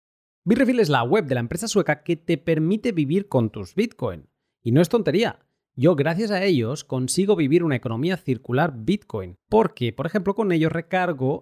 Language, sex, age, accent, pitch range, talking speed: Spanish, male, 30-49, Spanish, 130-175 Hz, 185 wpm